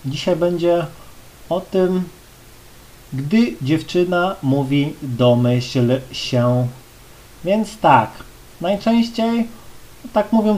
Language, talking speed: Polish, 80 wpm